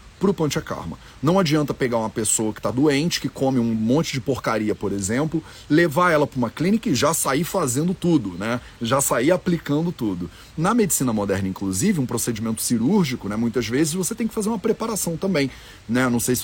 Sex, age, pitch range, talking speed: male, 30-49, 120-175 Hz, 200 wpm